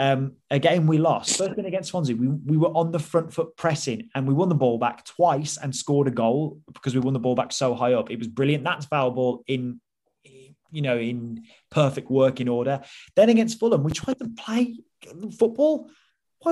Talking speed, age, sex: 210 wpm, 20-39, male